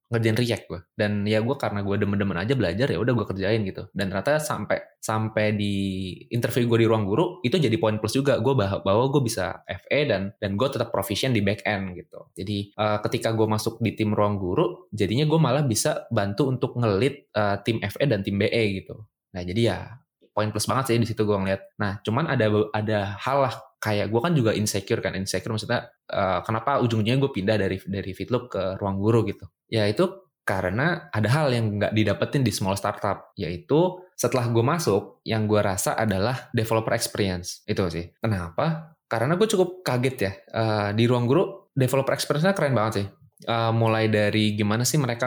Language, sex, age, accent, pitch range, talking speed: Indonesian, male, 20-39, native, 100-125 Hz, 200 wpm